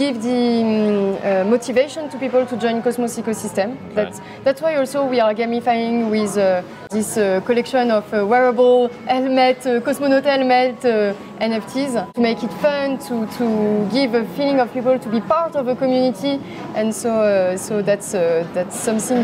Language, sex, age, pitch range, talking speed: English, female, 30-49, 215-260 Hz, 180 wpm